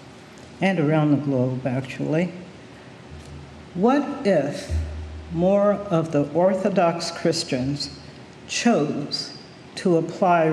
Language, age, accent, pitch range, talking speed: English, 60-79, American, 140-185 Hz, 85 wpm